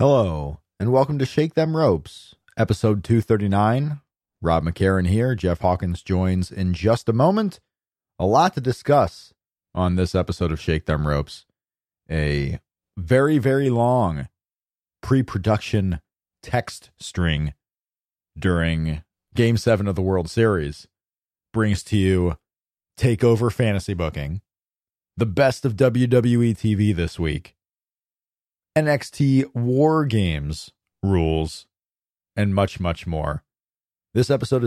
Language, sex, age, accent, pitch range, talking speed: English, male, 30-49, American, 90-120 Hz, 115 wpm